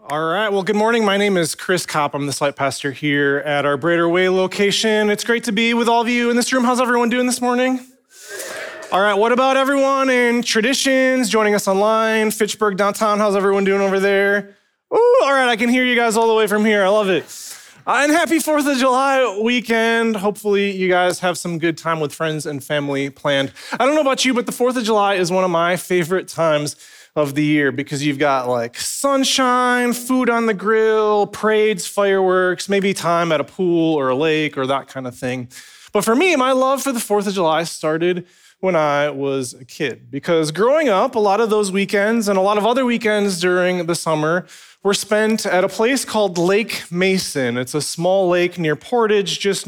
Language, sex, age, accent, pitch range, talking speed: English, male, 20-39, American, 155-230 Hz, 215 wpm